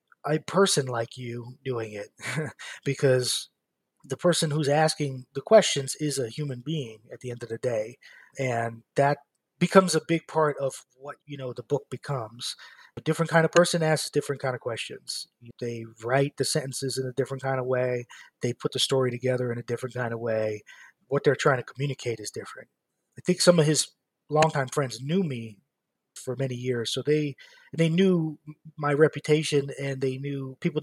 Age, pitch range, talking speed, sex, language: 30-49, 125-155 Hz, 185 wpm, male, English